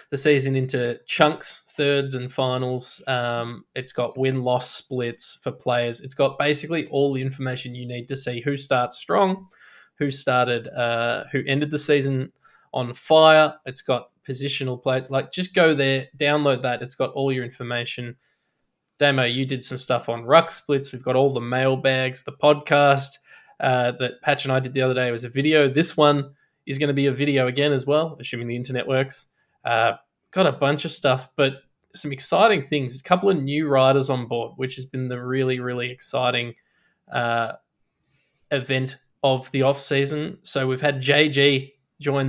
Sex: male